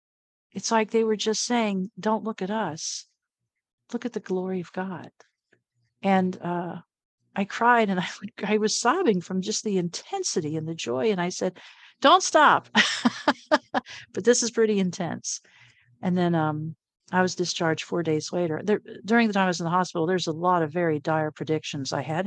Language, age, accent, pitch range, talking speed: English, 50-69, American, 160-220 Hz, 190 wpm